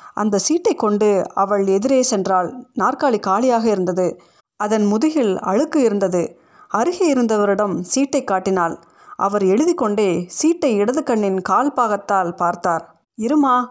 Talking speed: 110 wpm